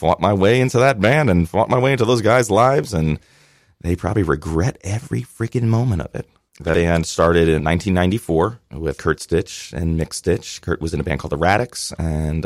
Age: 30-49